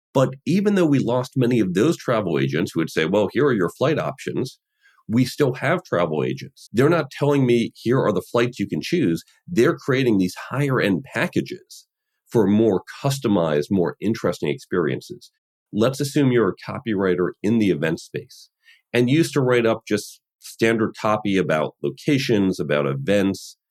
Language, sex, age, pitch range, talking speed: English, male, 40-59, 90-140 Hz, 170 wpm